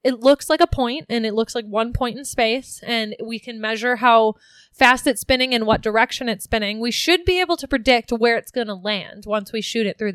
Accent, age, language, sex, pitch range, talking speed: American, 20-39, English, female, 225-275 Hz, 250 wpm